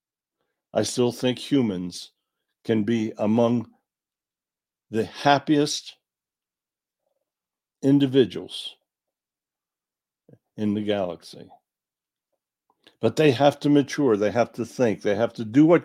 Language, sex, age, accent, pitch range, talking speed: English, male, 60-79, American, 110-150 Hz, 100 wpm